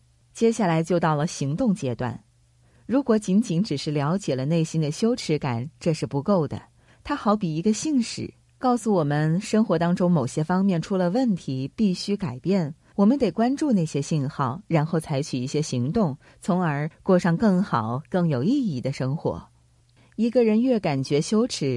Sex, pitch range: female, 140-200 Hz